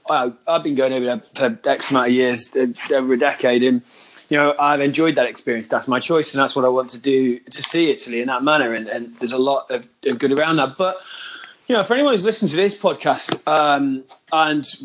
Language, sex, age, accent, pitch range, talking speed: English, male, 30-49, British, 130-155 Hz, 235 wpm